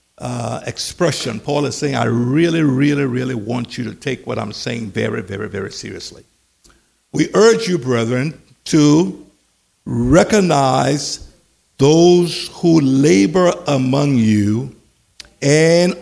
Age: 60-79